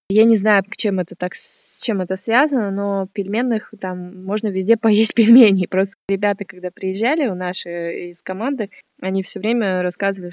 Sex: female